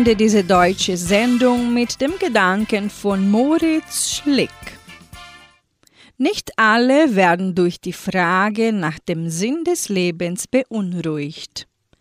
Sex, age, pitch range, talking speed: female, 40-59, 180-255 Hz, 105 wpm